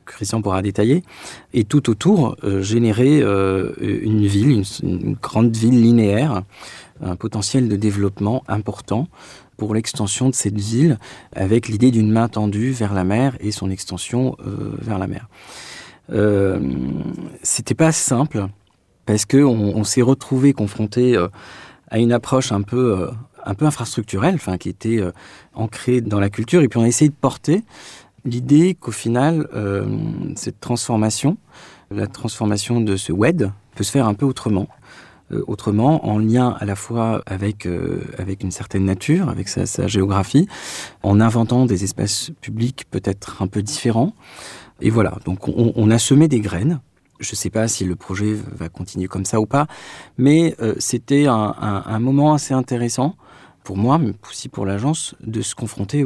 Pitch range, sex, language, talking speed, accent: 100-130 Hz, male, French, 170 wpm, French